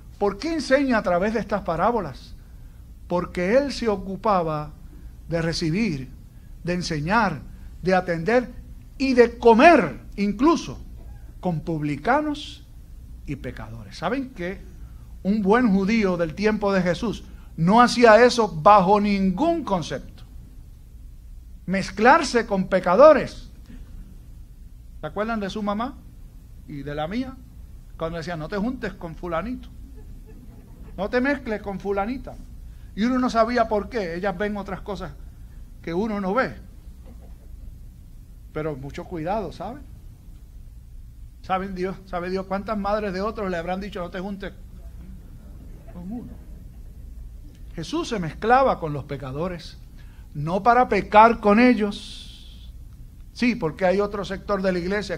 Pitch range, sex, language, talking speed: 155-215 Hz, male, Spanish, 130 wpm